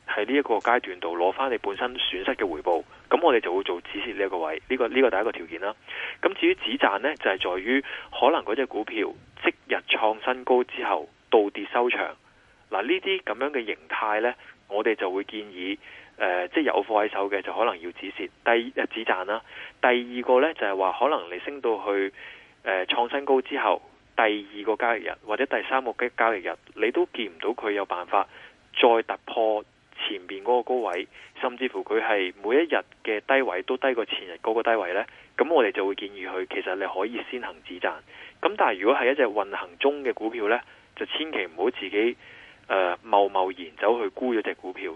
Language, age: Chinese, 20-39